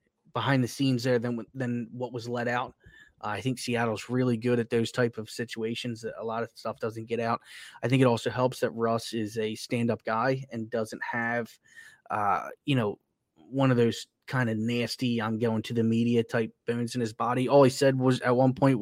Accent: American